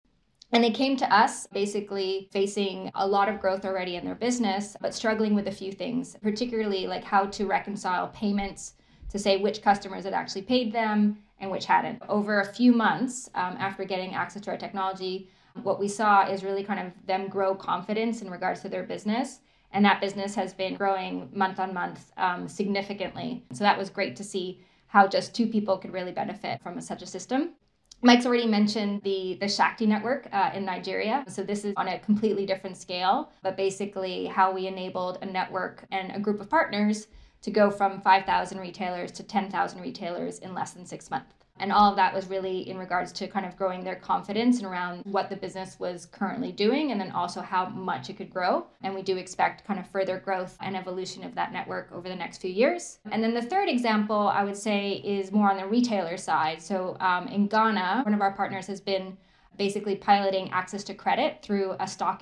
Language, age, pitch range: English, 20-39, 190-210 Hz